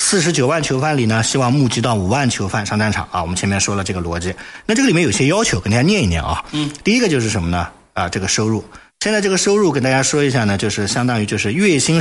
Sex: male